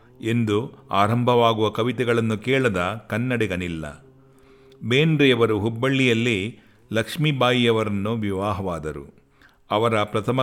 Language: Kannada